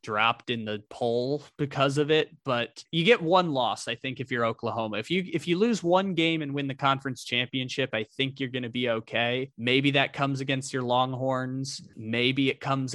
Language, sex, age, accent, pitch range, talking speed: English, male, 20-39, American, 115-145 Hz, 210 wpm